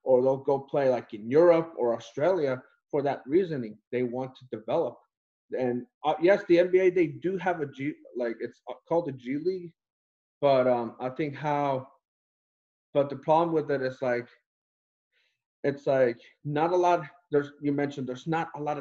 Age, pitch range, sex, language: 30-49, 130-175 Hz, male, English